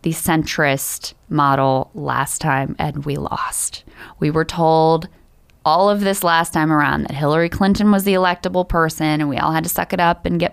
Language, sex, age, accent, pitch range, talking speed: English, female, 20-39, American, 150-185 Hz, 195 wpm